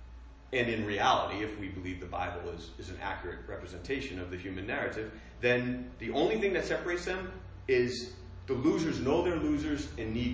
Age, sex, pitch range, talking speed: 40-59, male, 90-130 Hz, 185 wpm